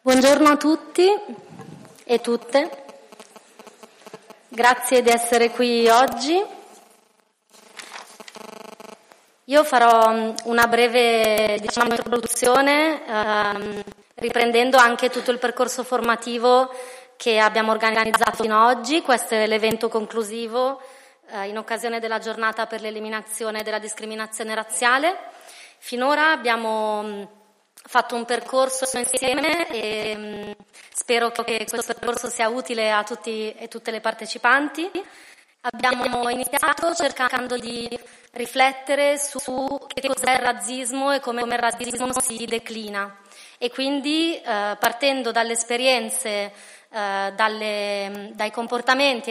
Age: 30-49